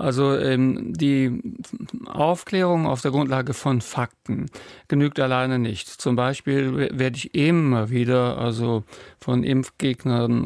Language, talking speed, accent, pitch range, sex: German, 115 wpm, German, 125-145 Hz, male